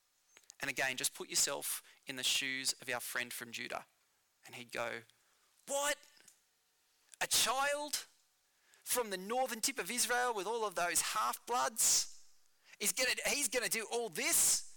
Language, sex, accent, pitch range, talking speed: English, male, Australian, 150-215 Hz, 145 wpm